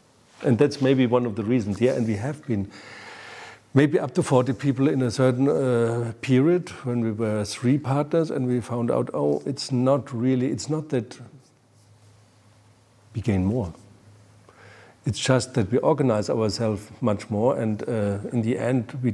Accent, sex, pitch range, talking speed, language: German, male, 110-130 Hz, 170 wpm, English